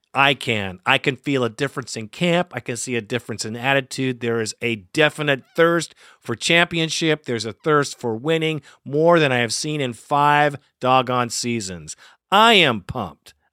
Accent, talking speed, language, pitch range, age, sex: American, 180 wpm, English, 115-150 Hz, 50-69, male